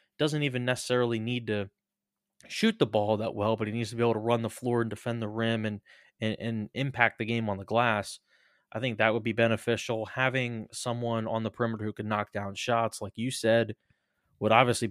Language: English